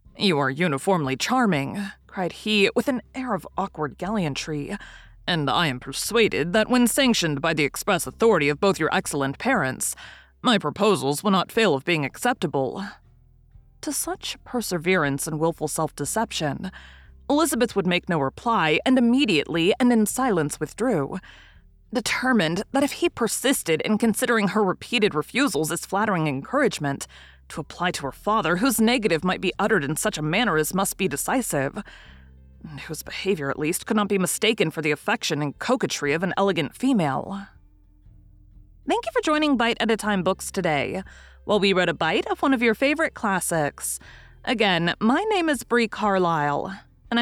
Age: 30-49